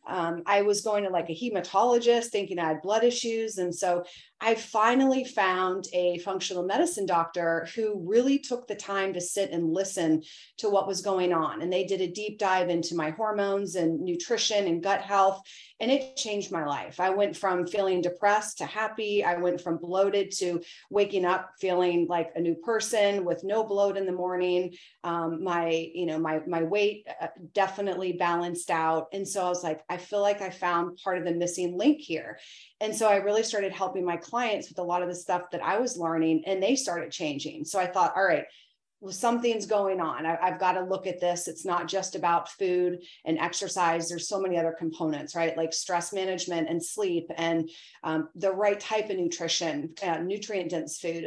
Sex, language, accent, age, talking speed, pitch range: female, English, American, 30-49, 200 wpm, 170-200 Hz